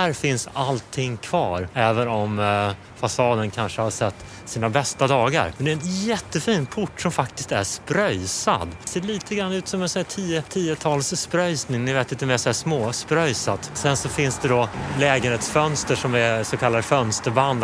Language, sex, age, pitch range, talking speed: English, male, 30-49, 110-145 Hz, 185 wpm